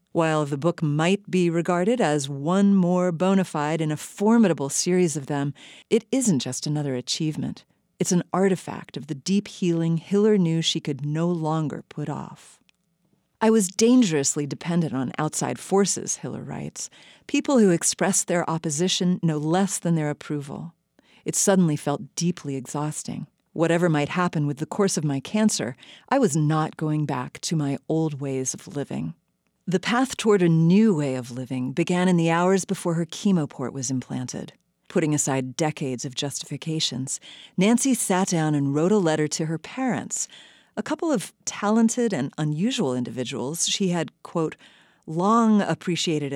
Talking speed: 165 wpm